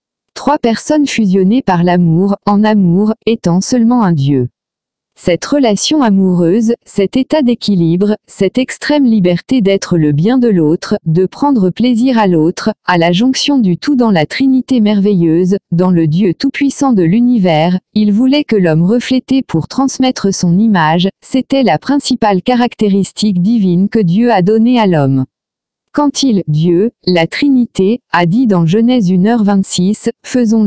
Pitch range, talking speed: 180-245 Hz, 150 wpm